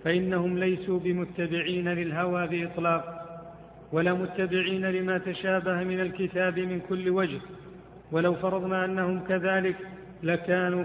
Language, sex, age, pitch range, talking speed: Arabic, male, 50-69, 175-185 Hz, 105 wpm